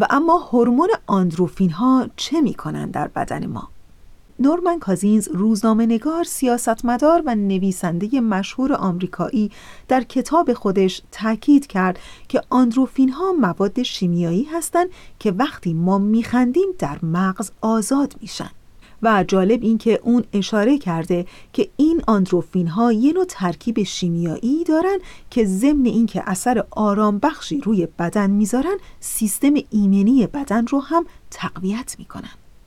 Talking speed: 130 wpm